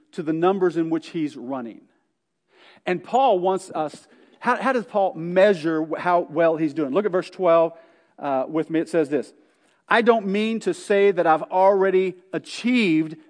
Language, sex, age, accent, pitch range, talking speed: English, male, 40-59, American, 165-225 Hz, 175 wpm